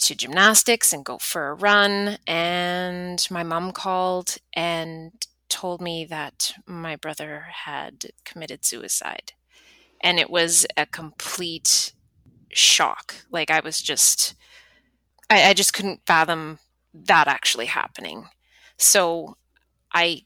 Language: English